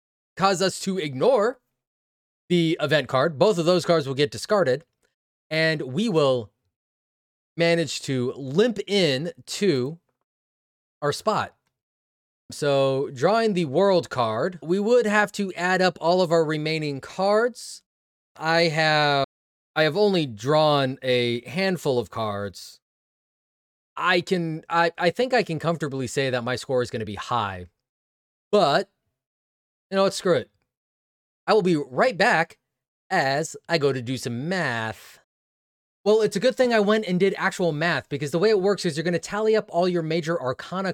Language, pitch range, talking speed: English, 125-185 Hz, 165 wpm